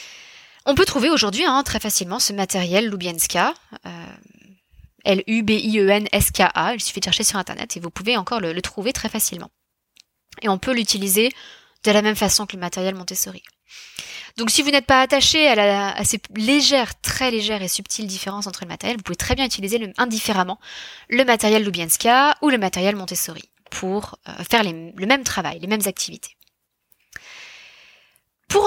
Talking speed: 165 wpm